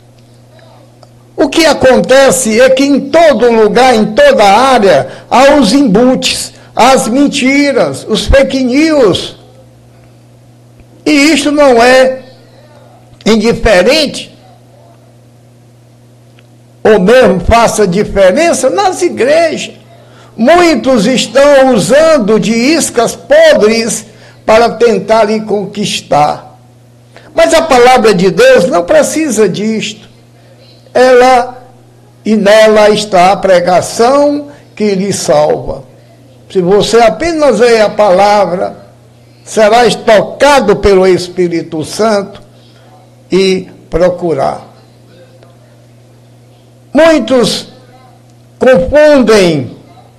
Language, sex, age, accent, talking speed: Portuguese, male, 60-79, Brazilian, 85 wpm